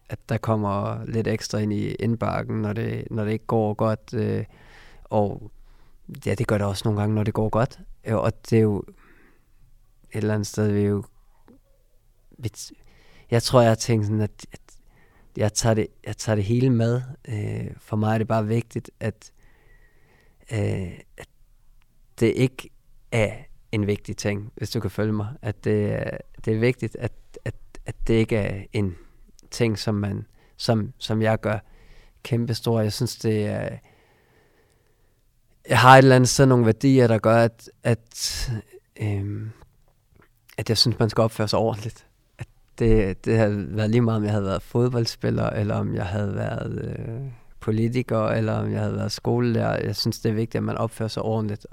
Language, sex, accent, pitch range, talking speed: Danish, male, native, 105-115 Hz, 180 wpm